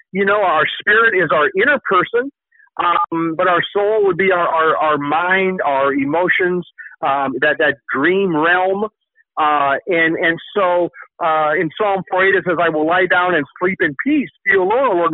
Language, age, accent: English, 50-69, American